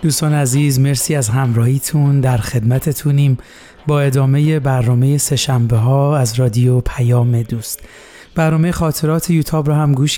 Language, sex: Persian, male